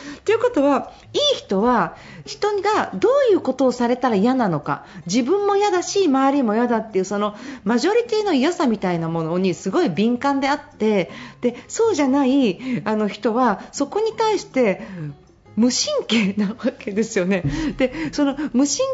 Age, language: 40-59, Japanese